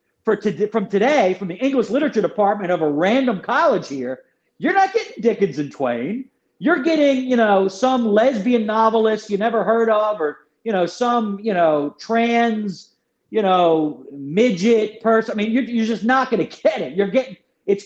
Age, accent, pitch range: 40-59, American, 200-255 Hz